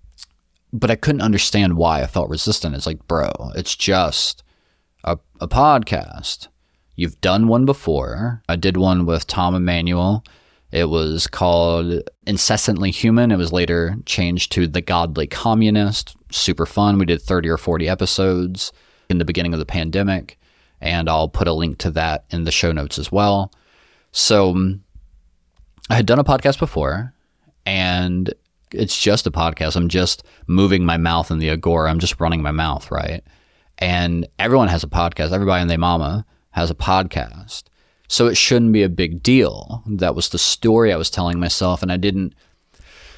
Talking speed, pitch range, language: 170 wpm, 80-100 Hz, English